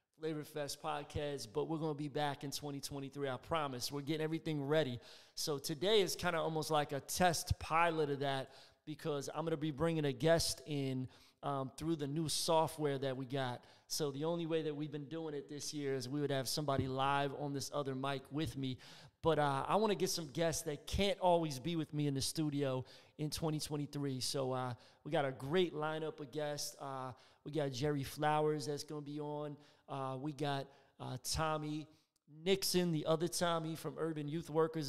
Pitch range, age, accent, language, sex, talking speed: 140-160 Hz, 30-49, American, English, male, 205 wpm